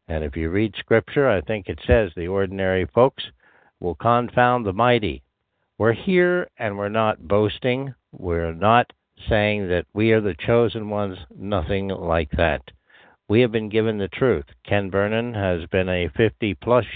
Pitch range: 85-110 Hz